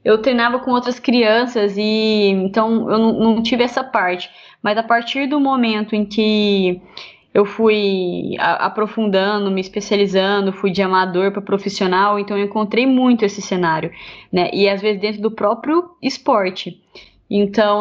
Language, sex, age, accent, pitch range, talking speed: Portuguese, female, 10-29, Brazilian, 185-225 Hz, 155 wpm